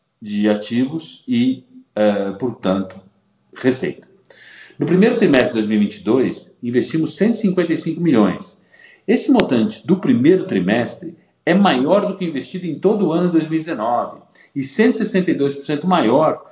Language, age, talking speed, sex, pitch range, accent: Portuguese, 50-69, 115 wpm, male, 110-170 Hz, Brazilian